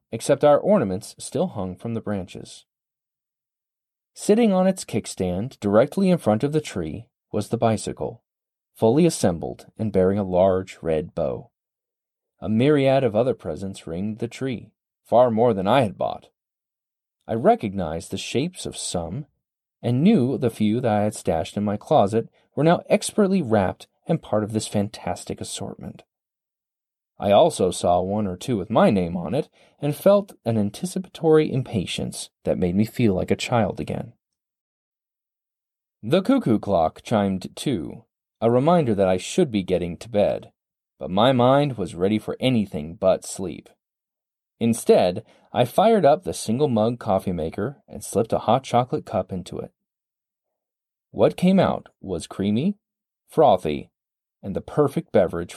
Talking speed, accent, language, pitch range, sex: 155 wpm, American, English, 95-145 Hz, male